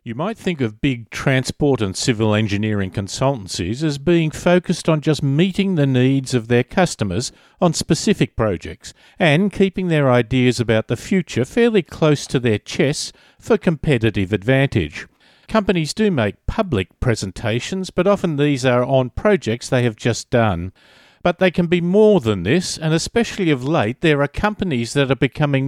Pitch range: 120-165 Hz